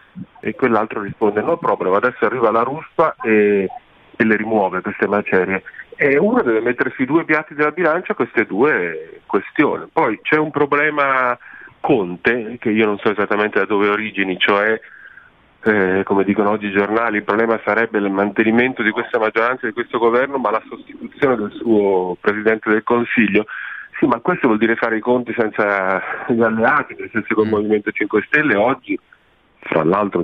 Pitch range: 100-130 Hz